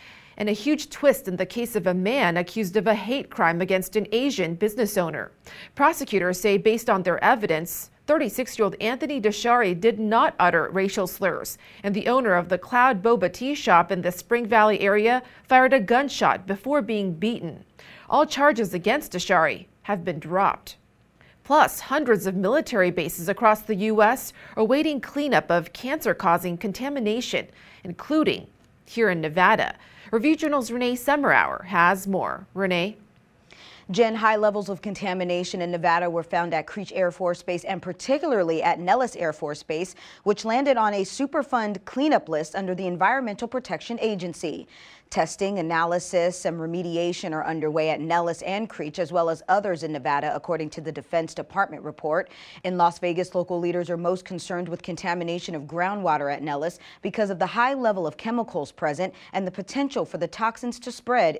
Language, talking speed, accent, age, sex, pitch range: English, 165 wpm, American, 40-59, female, 175-230 Hz